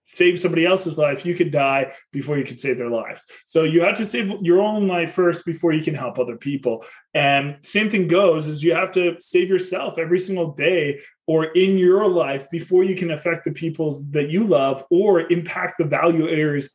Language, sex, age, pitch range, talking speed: English, male, 20-39, 145-175 Hz, 210 wpm